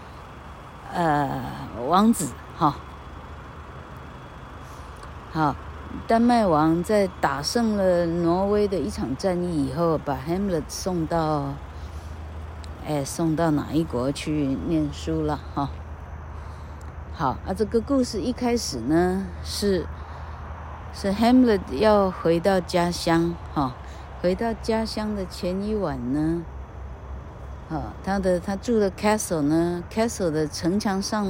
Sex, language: female, Chinese